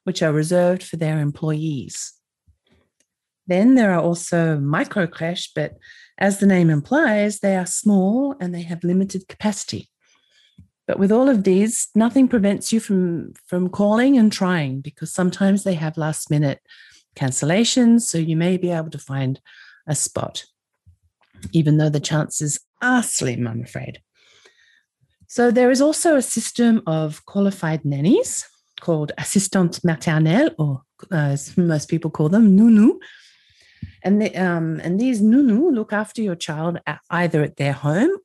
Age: 40-59